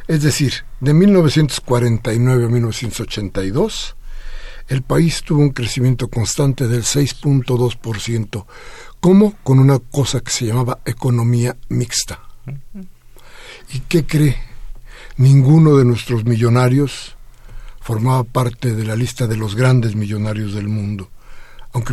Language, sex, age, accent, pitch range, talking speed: Spanish, male, 60-79, Mexican, 115-145 Hz, 115 wpm